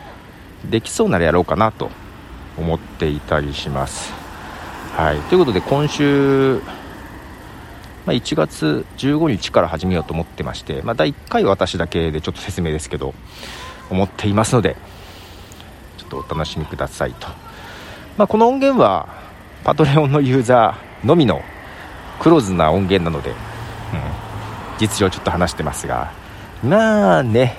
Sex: male